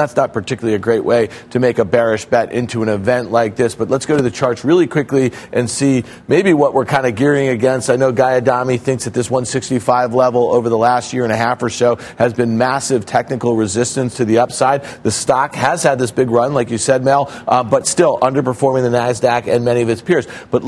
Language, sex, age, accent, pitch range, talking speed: English, male, 40-59, American, 115-135 Hz, 240 wpm